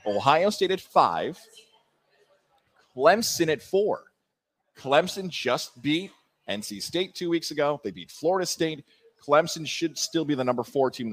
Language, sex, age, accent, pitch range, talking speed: English, male, 30-49, American, 130-175 Hz, 150 wpm